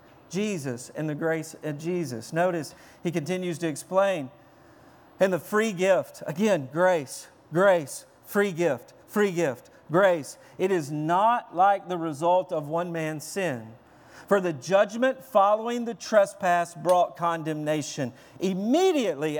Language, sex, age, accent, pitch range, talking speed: English, male, 50-69, American, 170-230 Hz, 130 wpm